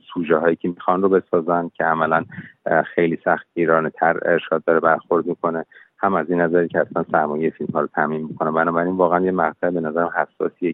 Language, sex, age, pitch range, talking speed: Persian, male, 30-49, 80-85 Hz, 195 wpm